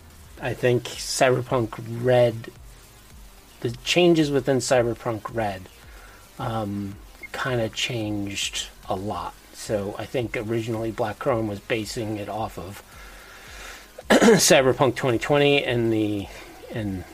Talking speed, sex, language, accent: 110 wpm, male, English, American